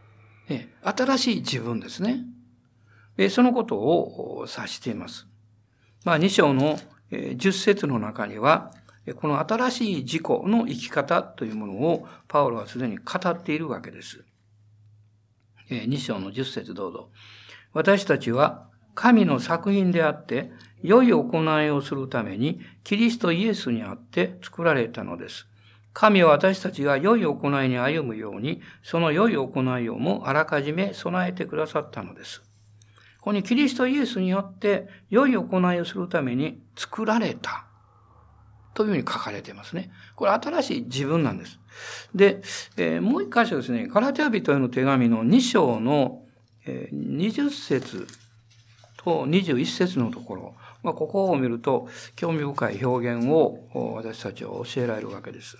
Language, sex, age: Japanese, male, 60-79